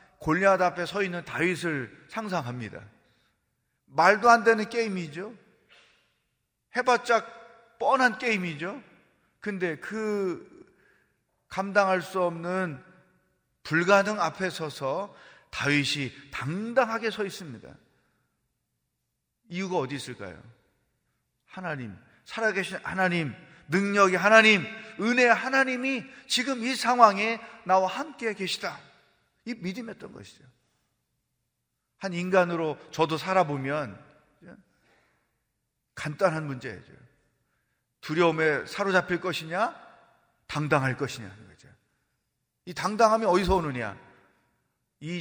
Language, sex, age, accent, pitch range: Korean, male, 40-59, native, 155-220 Hz